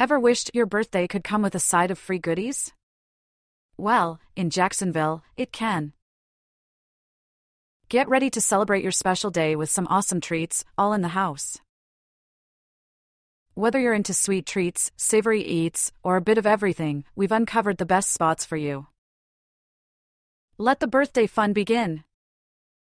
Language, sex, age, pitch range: English, female, 30-49, 165-220 Hz